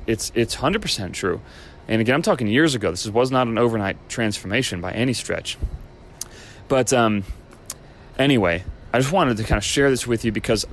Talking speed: 185 wpm